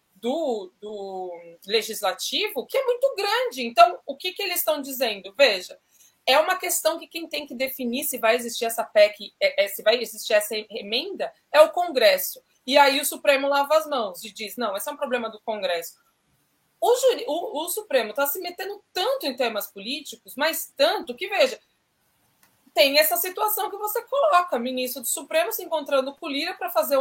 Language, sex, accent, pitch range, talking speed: Portuguese, female, Brazilian, 235-325 Hz, 180 wpm